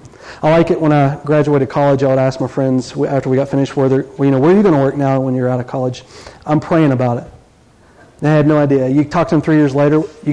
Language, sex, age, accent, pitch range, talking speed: English, male, 40-59, American, 140-205 Hz, 255 wpm